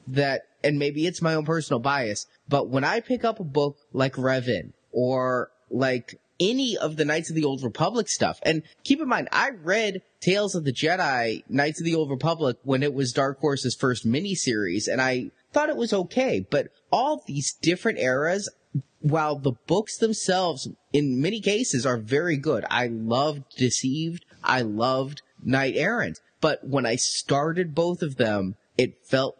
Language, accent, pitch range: English, American, 130-160 Hz